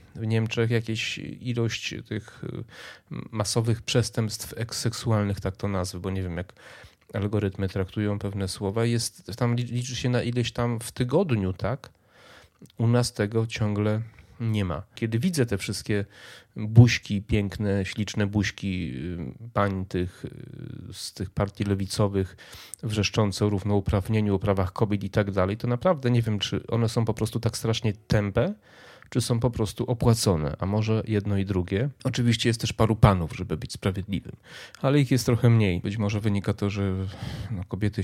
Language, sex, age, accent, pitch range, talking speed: Polish, male, 30-49, native, 100-115 Hz, 155 wpm